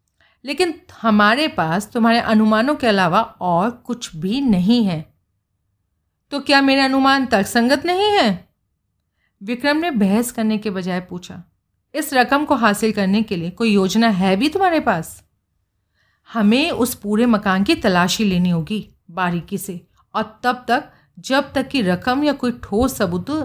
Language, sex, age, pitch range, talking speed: Hindi, female, 40-59, 180-245 Hz, 155 wpm